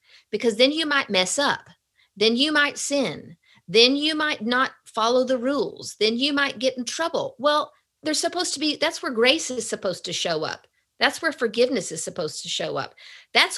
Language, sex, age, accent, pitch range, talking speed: English, female, 40-59, American, 220-295 Hz, 200 wpm